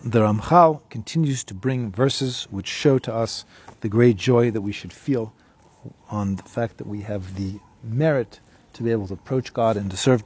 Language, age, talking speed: English, 40-59, 200 wpm